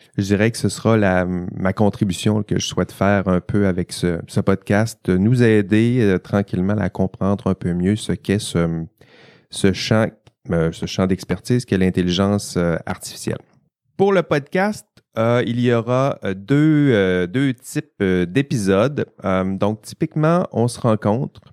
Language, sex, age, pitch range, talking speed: French, male, 30-49, 95-115 Hz, 150 wpm